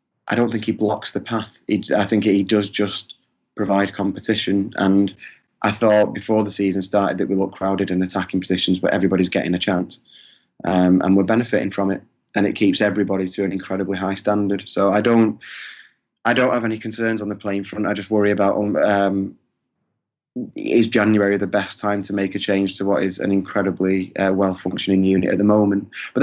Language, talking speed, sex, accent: English, 200 wpm, male, British